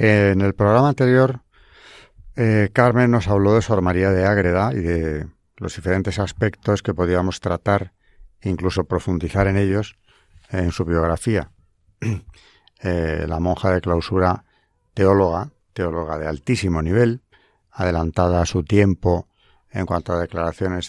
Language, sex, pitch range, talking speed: Spanish, male, 85-105 Hz, 130 wpm